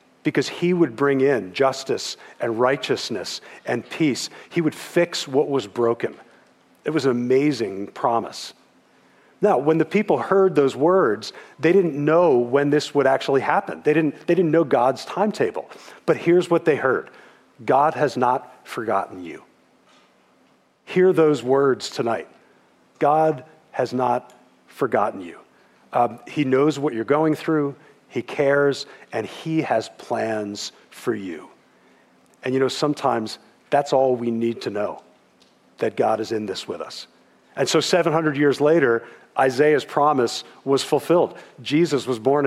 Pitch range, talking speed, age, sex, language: 130-160 Hz, 150 wpm, 40-59, male, English